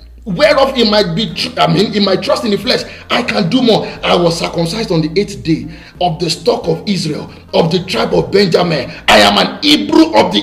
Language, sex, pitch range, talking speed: English, male, 170-275 Hz, 225 wpm